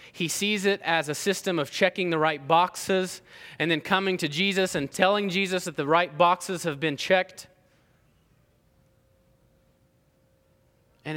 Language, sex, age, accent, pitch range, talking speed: English, male, 20-39, American, 120-160 Hz, 145 wpm